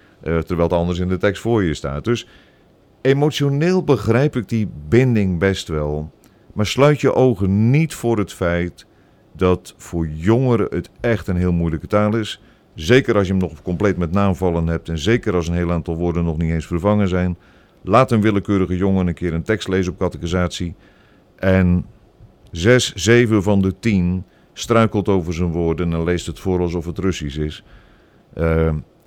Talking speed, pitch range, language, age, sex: 180 wpm, 90-115 Hz, Dutch, 50-69, male